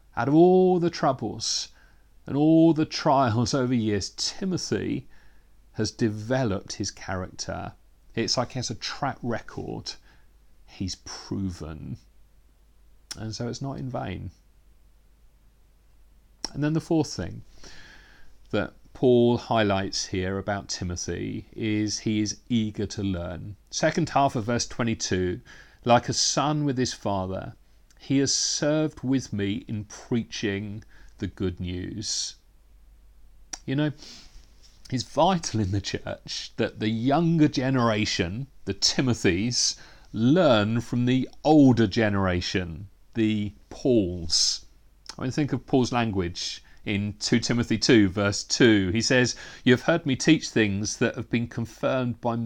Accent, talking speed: British, 130 wpm